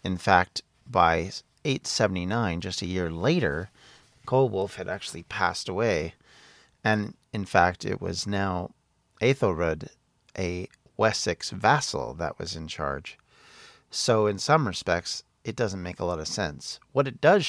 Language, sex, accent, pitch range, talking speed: English, male, American, 90-120 Hz, 140 wpm